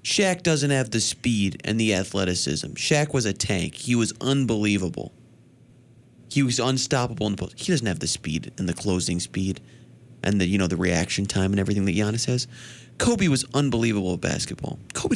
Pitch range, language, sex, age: 100-125 Hz, English, male, 30-49